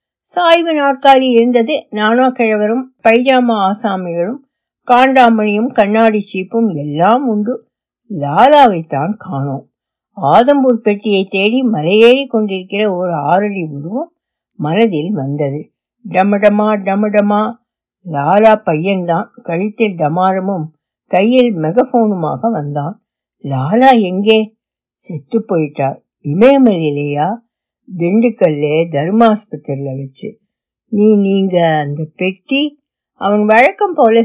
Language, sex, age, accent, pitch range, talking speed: Tamil, female, 60-79, native, 170-235 Hz, 85 wpm